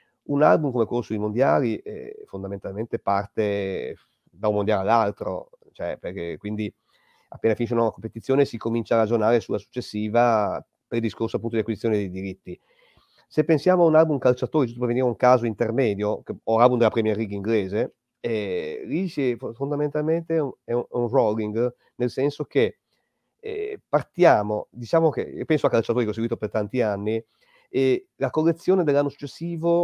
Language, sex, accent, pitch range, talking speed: Italian, male, native, 110-150 Hz, 165 wpm